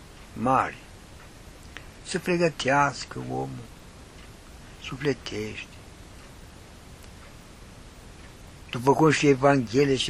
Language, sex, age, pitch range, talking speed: Romanian, male, 60-79, 90-125 Hz, 60 wpm